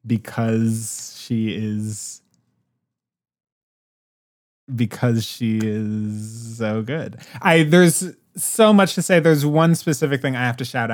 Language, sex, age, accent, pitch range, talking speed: English, male, 20-39, American, 110-160 Hz, 120 wpm